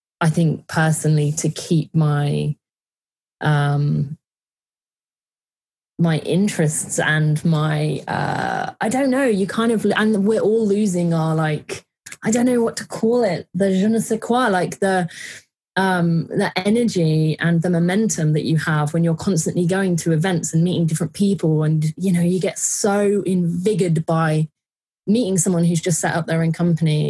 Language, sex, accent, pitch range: English, female, British, 160-195 Hz